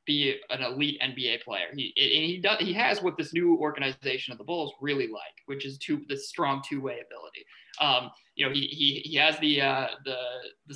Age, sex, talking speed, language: 20-39, male, 205 wpm, English